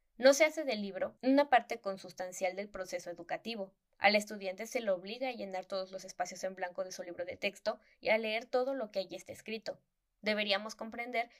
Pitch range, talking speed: 190-230 Hz, 205 wpm